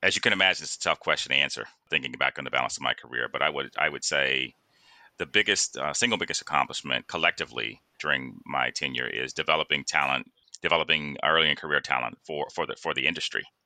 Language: English